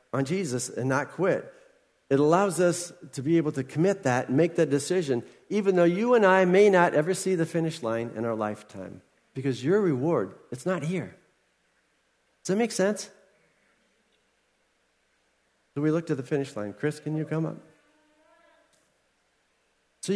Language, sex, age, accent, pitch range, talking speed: English, male, 50-69, American, 135-195 Hz, 165 wpm